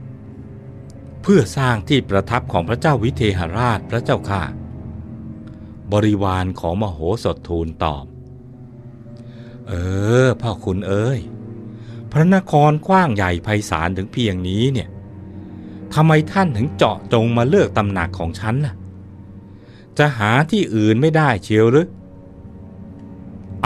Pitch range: 90-125 Hz